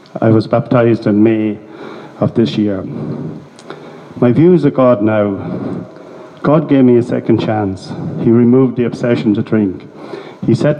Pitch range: 110-125 Hz